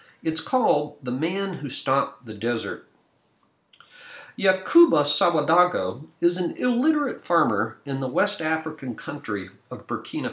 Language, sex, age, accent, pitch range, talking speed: English, male, 50-69, American, 115-185 Hz, 120 wpm